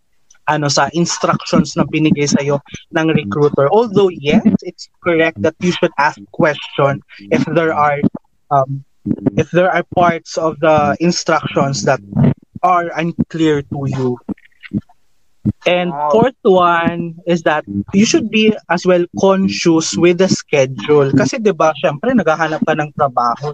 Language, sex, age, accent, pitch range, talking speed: Filipino, male, 20-39, native, 150-190 Hz, 140 wpm